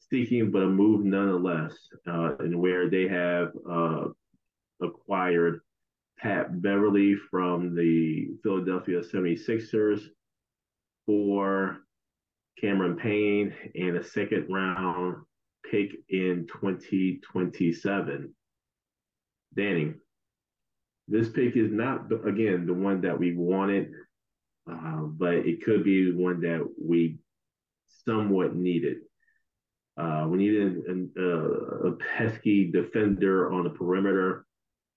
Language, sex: English, male